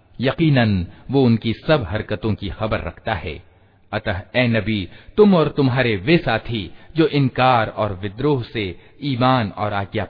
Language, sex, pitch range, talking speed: Hindi, male, 100-130 Hz, 150 wpm